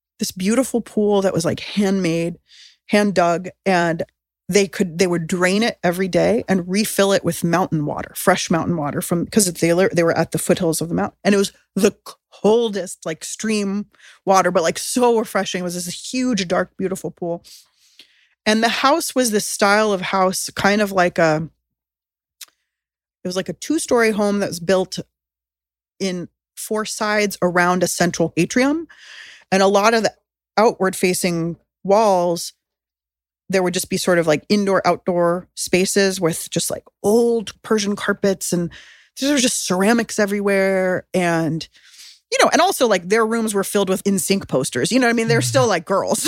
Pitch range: 170-210 Hz